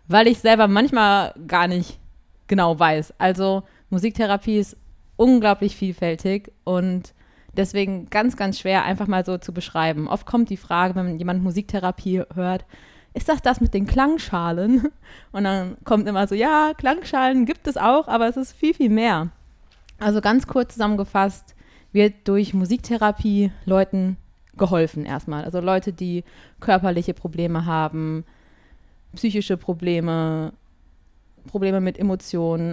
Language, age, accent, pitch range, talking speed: German, 20-39, German, 170-210 Hz, 140 wpm